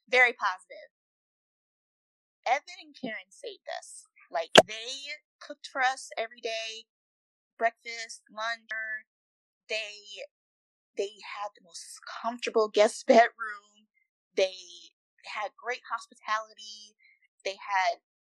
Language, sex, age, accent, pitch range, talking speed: English, female, 20-39, American, 195-300 Hz, 100 wpm